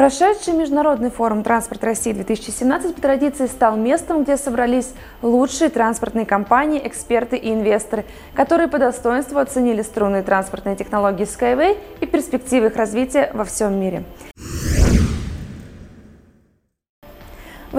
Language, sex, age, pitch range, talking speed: Russian, female, 20-39, 230-320 Hz, 110 wpm